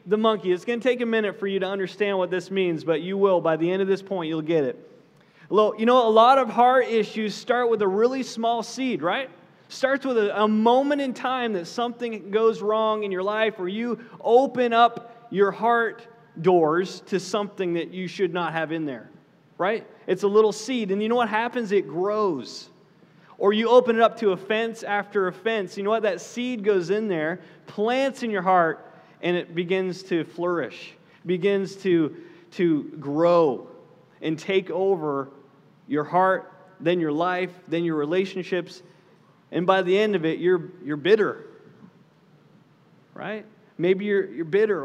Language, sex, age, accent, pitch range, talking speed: English, male, 30-49, American, 170-220 Hz, 185 wpm